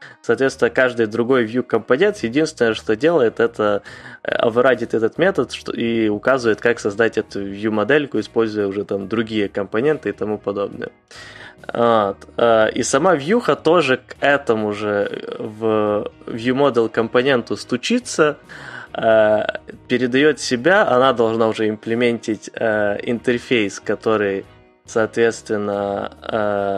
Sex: male